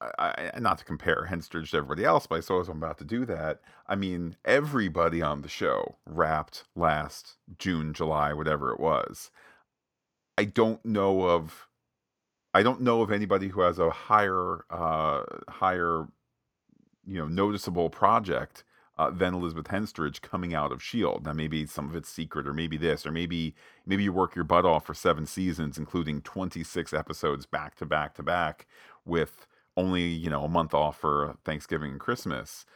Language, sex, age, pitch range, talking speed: English, male, 40-59, 75-95 Hz, 180 wpm